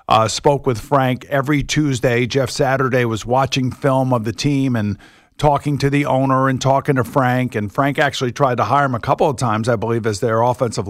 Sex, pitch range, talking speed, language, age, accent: male, 115-140 Hz, 215 wpm, English, 50-69, American